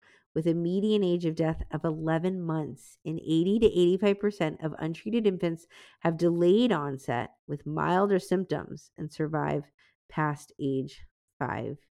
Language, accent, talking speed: English, American, 135 wpm